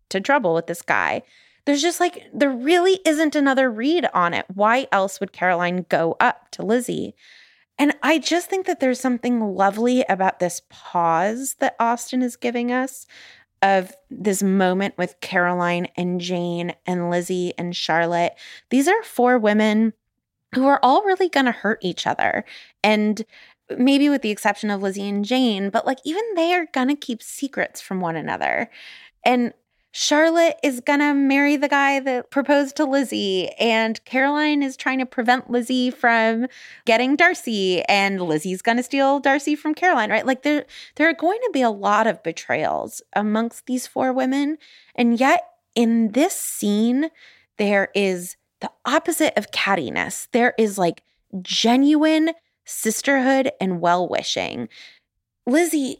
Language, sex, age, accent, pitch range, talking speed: English, female, 20-39, American, 195-280 Hz, 160 wpm